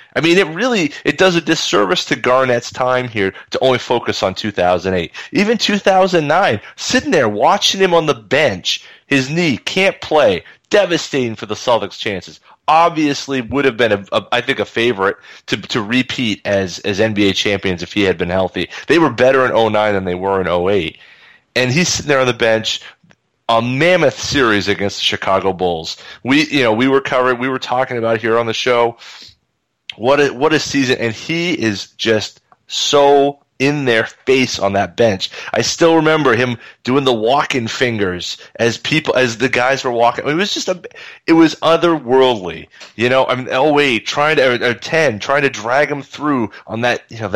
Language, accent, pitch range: English, American, 110-155 Hz